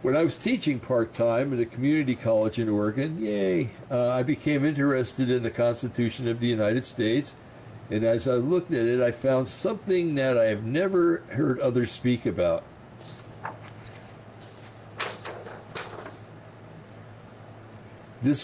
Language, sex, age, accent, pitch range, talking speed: English, male, 60-79, American, 115-140 Hz, 135 wpm